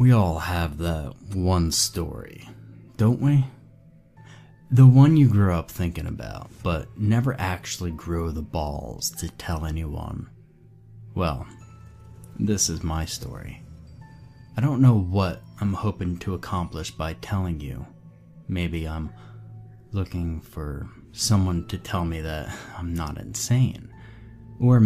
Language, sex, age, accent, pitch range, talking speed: English, male, 20-39, American, 85-110 Hz, 130 wpm